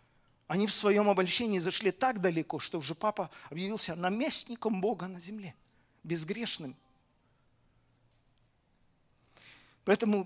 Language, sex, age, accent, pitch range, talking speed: Russian, male, 40-59, native, 150-195 Hz, 100 wpm